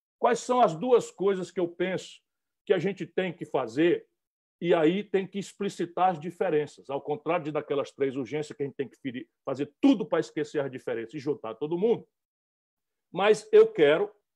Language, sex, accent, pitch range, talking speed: Portuguese, male, Brazilian, 160-225 Hz, 185 wpm